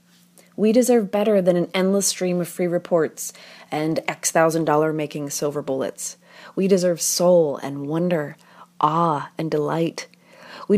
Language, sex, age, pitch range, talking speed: English, female, 30-49, 160-190 Hz, 130 wpm